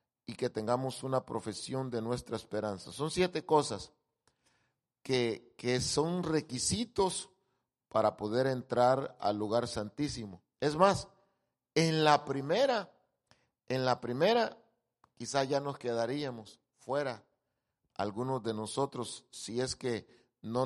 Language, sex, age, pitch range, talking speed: English, male, 40-59, 120-150 Hz, 120 wpm